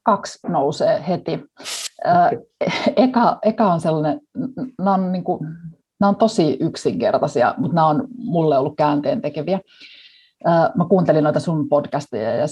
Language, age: Finnish, 30-49